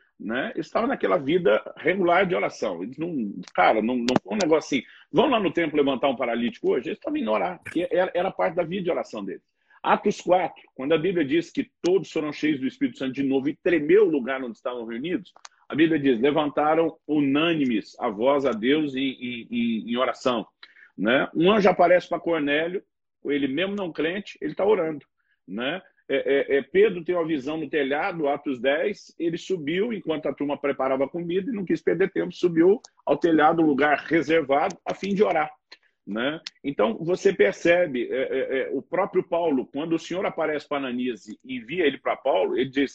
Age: 40-59